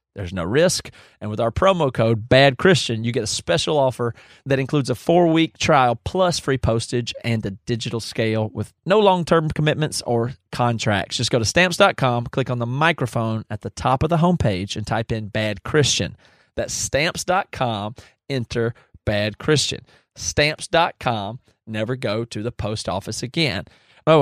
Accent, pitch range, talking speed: American, 115-145 Hz, 155 wpm